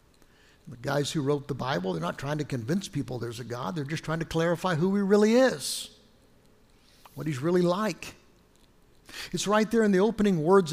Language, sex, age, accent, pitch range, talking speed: English, male, 60-79, American, 145-190 Hz, 195 wpm